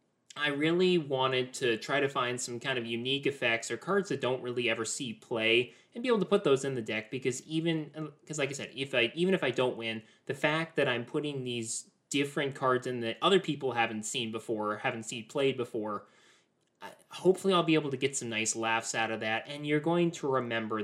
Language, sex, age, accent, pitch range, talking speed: English, male, 20-39, American, 115-145 Hz, 225 wpm